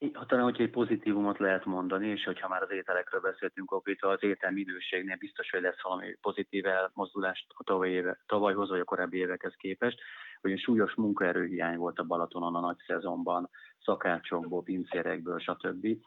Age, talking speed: 30-49, 150 wpm